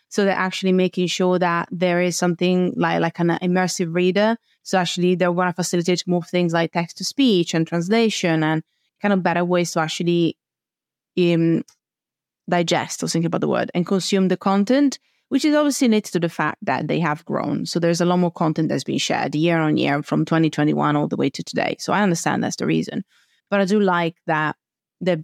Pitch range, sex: 165-195 Hz, female